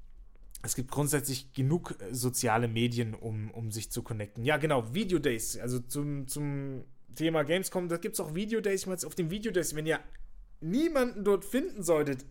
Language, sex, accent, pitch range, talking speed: German, male, German, 125-170 Hz, 175 wpm